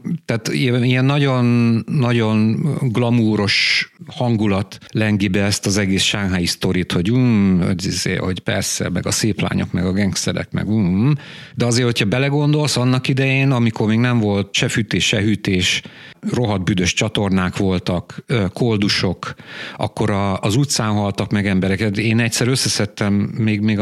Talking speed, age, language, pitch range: 130 wpm, 50-69, Hungarian, 100-120 Hz